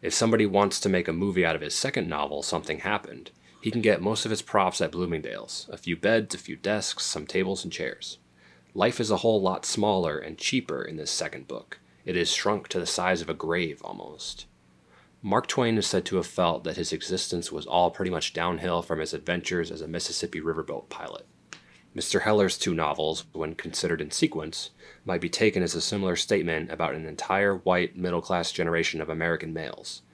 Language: English